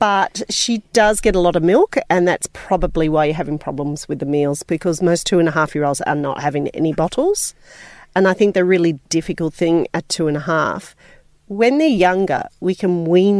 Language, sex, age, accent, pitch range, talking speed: English, female, 40-59, Australian, 150-180 Hz, 185 wpm